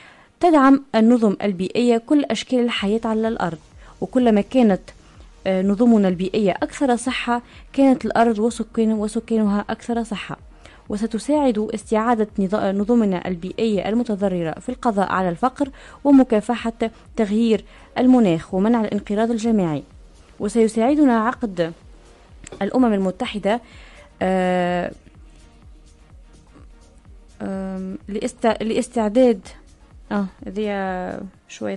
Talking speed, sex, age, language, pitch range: 80 wpm, female, 20-39, Arabic, 195-235 Hz